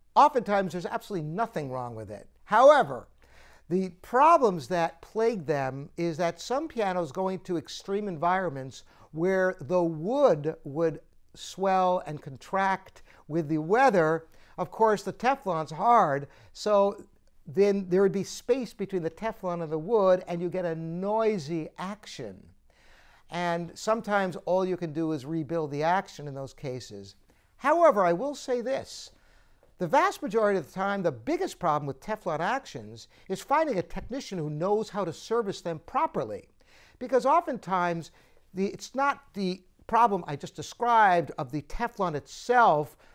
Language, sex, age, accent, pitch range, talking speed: English, male, 60-79, American, 160-220 Hz, 150 wpm